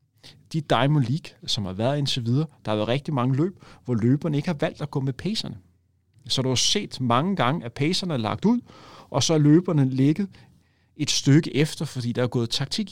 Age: 40-59